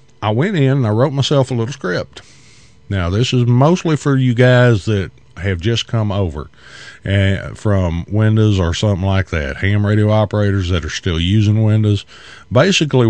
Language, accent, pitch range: English, American, 95-115 Hz